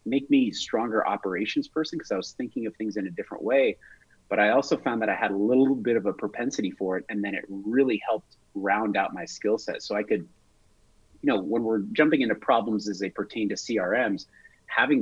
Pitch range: 100-130 Hz